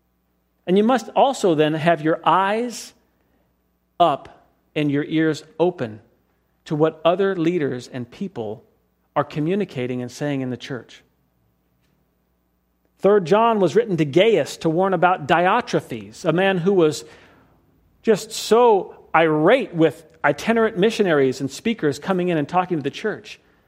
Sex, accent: male, American